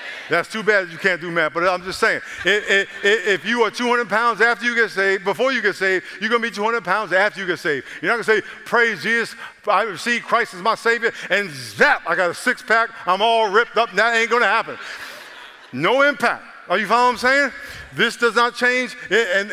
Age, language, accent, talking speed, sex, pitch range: 50-69, English, American, 245 wpm, male, 175-235 Hz